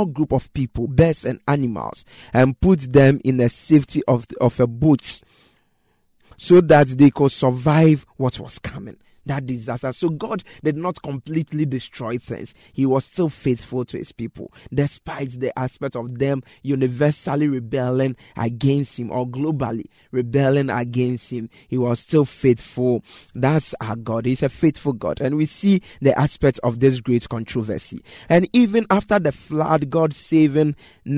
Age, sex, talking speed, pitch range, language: 30-49, male, 155 wpm, 125-160 Hz, English